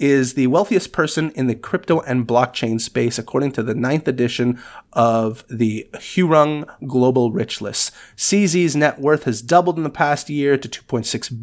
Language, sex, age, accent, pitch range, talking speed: English, male, 30-49, American, 120-150 Hz, 170 wpm